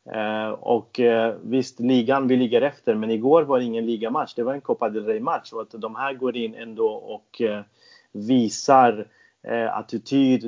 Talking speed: 190 wpm